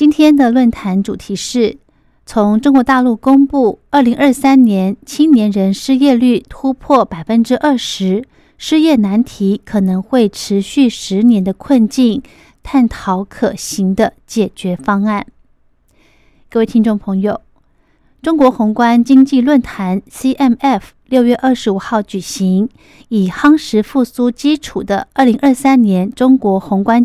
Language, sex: Chinese, female